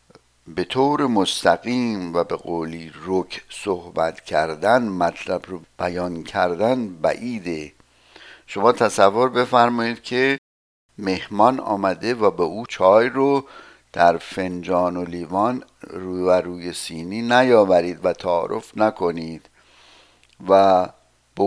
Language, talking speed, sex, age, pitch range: Persian, 110 wpm, male, 60-79, 90-115 Hz